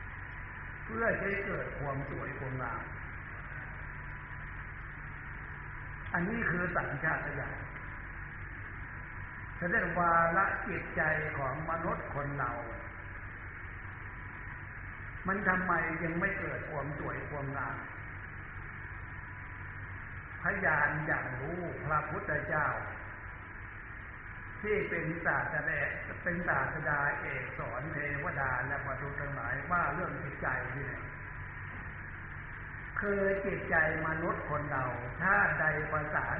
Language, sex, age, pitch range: Thai, male, 60-79, 110-150 Hz